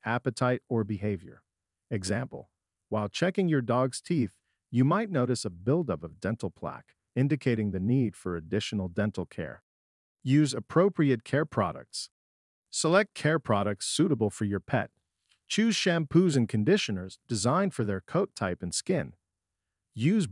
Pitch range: 95-150 Hz